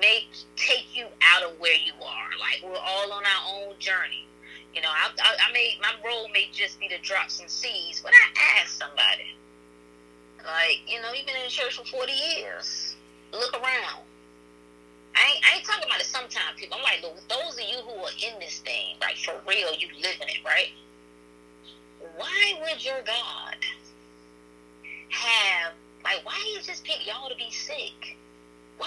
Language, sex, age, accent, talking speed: English, female, 20-39, American, 185 wpm